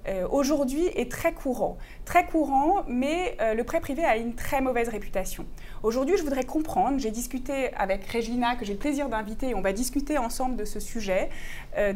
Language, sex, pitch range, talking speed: French, female, 230-310 Hz, 195 wpm